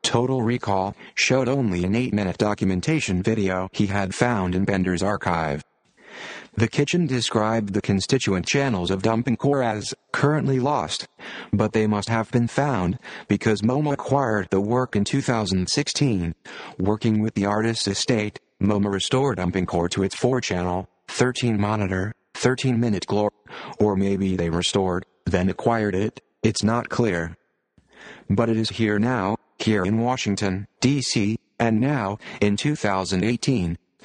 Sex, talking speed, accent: male, 135 wpm, American